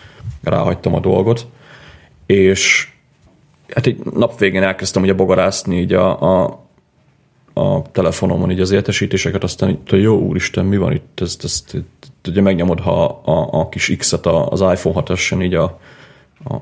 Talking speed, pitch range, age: 155 wpm, 90-100 Hz, 30-49